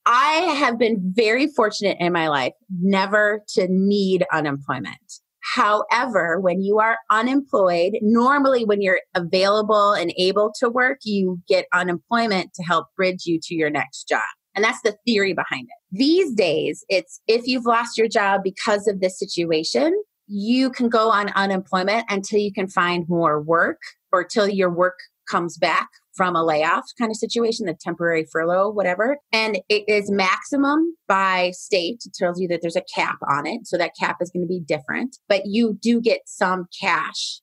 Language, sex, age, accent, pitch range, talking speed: English, female, 30-49, American, 175-220 Hz, 175 wpm